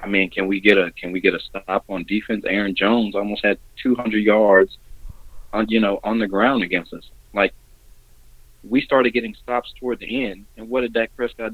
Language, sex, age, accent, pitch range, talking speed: English, male, 30-49, American, 100-145 Hz, 210 wpm